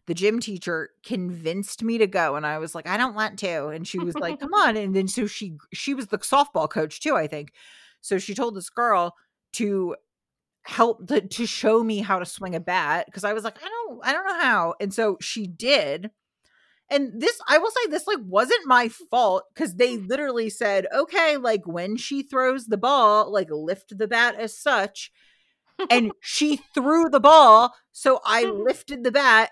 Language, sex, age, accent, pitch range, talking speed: English, female, 40-59, American, 200-275 Hz, 200 wpm